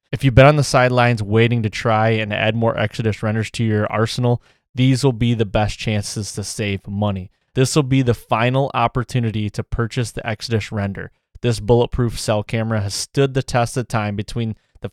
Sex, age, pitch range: male, 20-39, 105-125 Hz